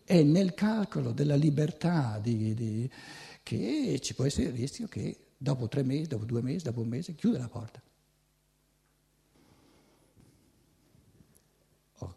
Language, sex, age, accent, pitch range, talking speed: Italian, male, 60-79, native, 115-165 Hz, 125 wpm